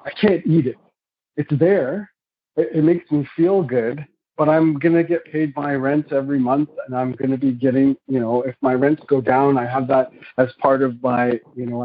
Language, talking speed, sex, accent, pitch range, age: English, 215 wpm, male, American, 125-145 Hz, 50-69